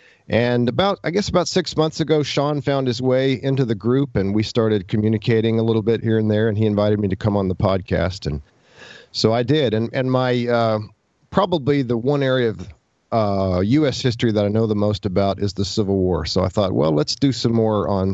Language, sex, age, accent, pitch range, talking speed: English, male, 40-59, American, 105-130 Hz, 230 wpm